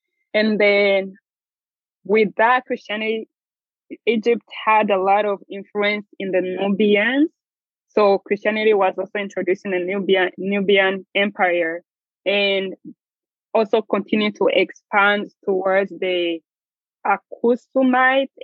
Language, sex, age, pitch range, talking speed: English, female, 20-39, 185-215 Hz, 105 wpm